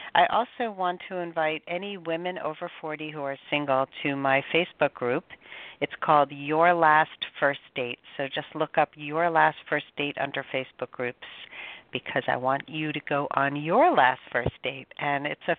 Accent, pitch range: American, 140-170 Hz